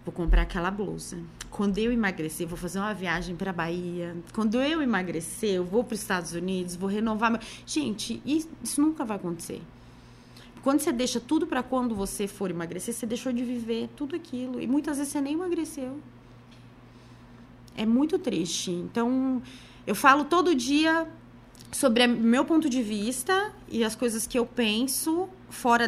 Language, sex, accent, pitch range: Portuguese, female, Brazilian, 185-270 Hz